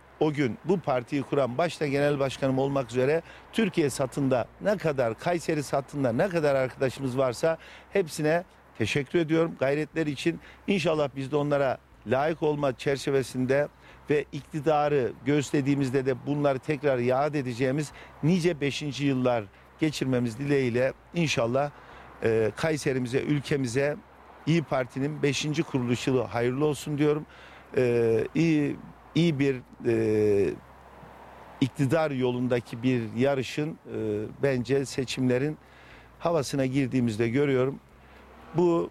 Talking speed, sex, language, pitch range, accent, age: 110 wpm, male, Turkish, 125-150 Hz, native, 50-69